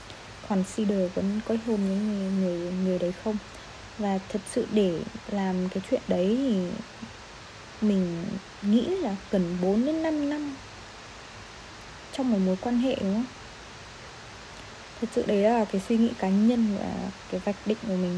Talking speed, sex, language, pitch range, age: 160 wpm, female, Vietnamese, 205-250 Hz, 20-39